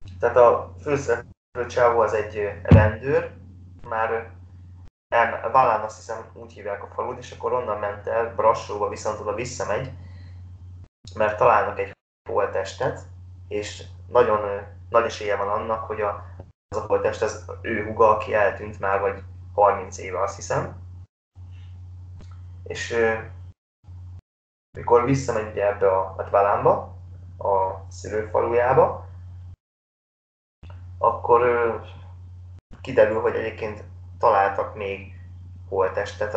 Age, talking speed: 20-39, 110 wpm